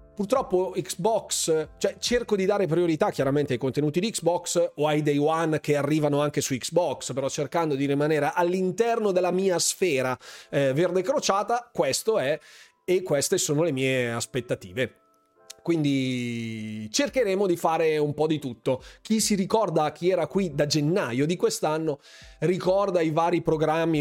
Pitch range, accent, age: 140-180 Hz, native, 30-49